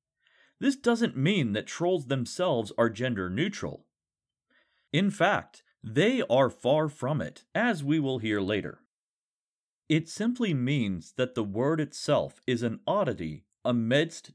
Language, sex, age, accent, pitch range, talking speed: English, male, 40-59, American, 115-170 Hz, 130 wpm